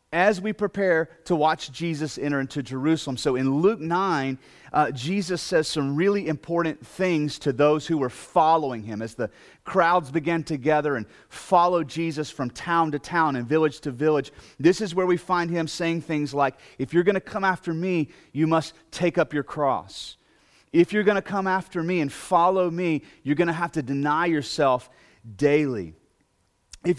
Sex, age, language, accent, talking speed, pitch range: male, 30-49, English, American, 180 wpm, 145-175 Hz